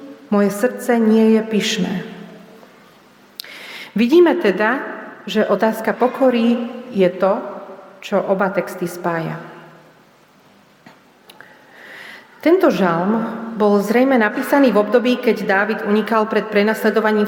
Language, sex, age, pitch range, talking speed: Slovak, female, 40-59, 190-225 Hz, 95 wpm